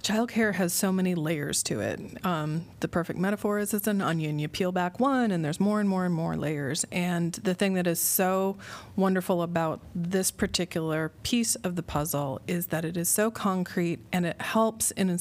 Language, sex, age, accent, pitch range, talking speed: English, female, 30-49, American, 160-195 Hz, 205 wpm